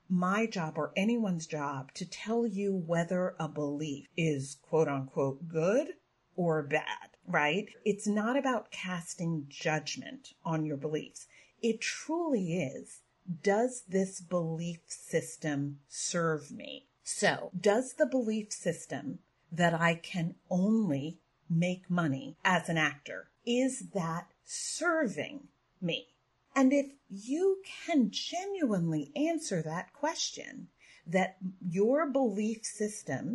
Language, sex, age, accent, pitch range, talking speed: English, female, 40-59, American, 160-225 Hz, 115 wpm